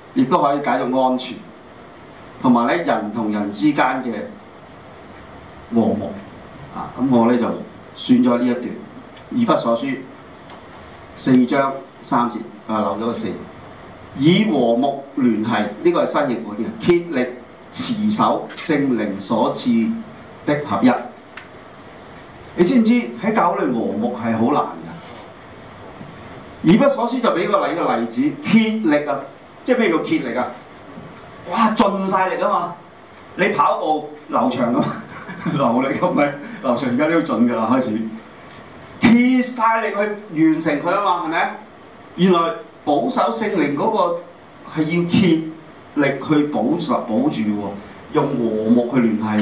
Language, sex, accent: Chinese, male, native